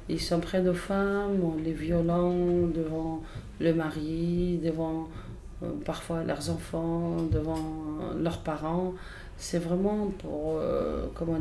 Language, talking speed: French, 120 wpm